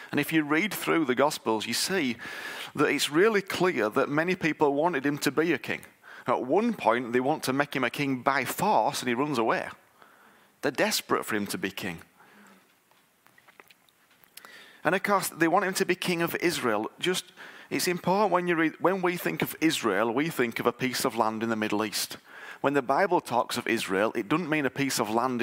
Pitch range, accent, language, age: 130-170 Hz, British, English, 40-59